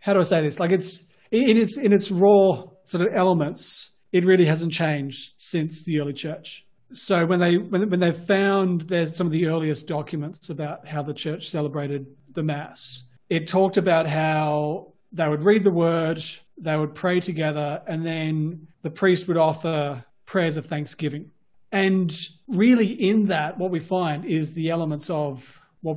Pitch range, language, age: 155-185 Hz, English, 30-49